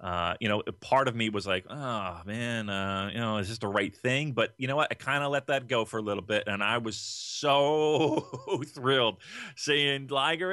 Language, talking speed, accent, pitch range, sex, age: English, 220 wpm, American, 135-200 Hz, male, 30-49